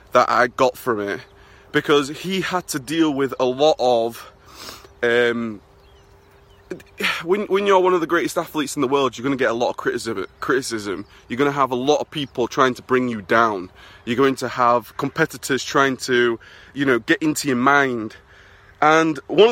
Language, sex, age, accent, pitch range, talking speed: English, male, 20-39, British, 120-155 Hz, 190 wpm